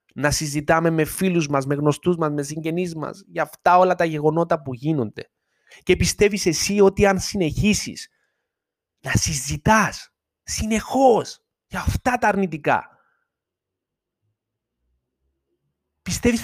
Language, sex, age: Greek, male, 30-49